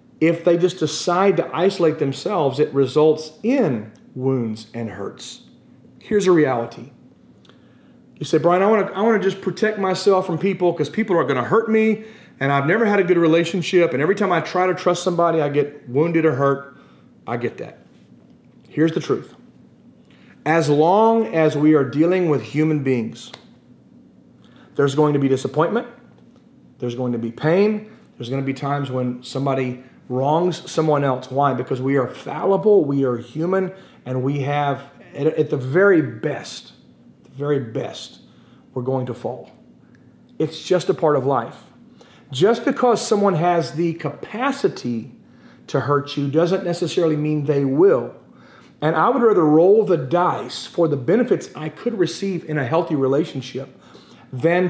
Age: 40-59